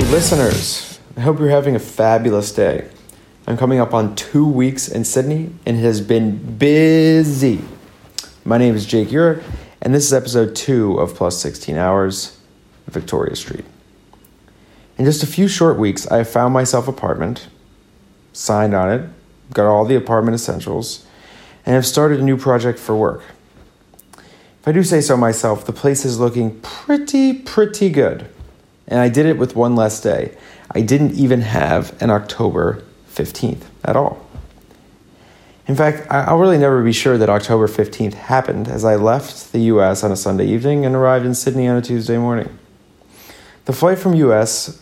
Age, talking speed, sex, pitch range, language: 30-49, 170 wpm, male, 110-140 Hz, English